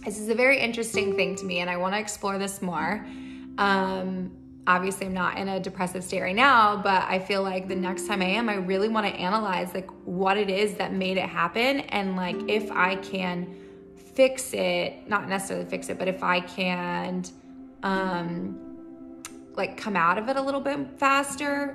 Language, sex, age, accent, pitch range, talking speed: English, female, 20-39, American, 180-210 Hz, 195 wpm